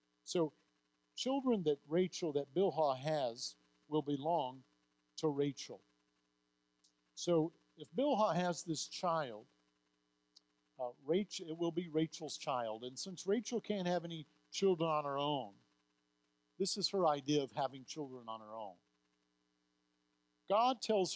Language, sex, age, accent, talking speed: English, male, 60-79, American, 130 wpm